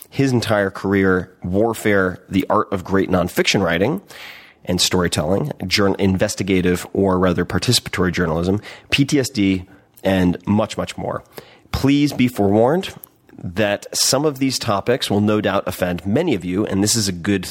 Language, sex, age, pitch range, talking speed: English, male, 30-49, 90-105 Hz, 145 wpm